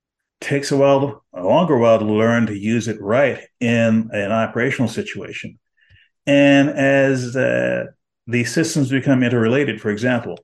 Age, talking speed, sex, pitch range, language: 50-69, 150 wpm, male, 115-140 Hz, English